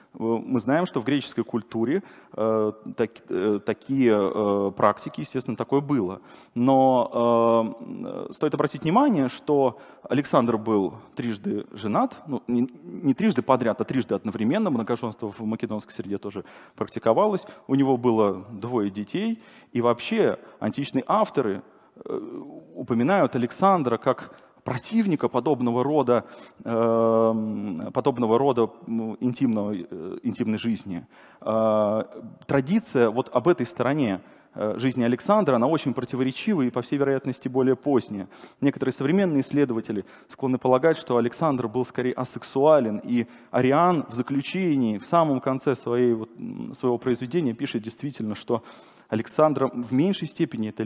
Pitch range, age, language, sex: 115-140 Hz, 30-49, Russian, male